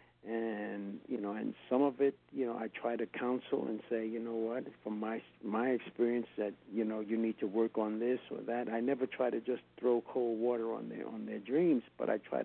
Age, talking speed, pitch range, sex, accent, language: 50-69, 235 wpm, 110-120 Hz, male, American, English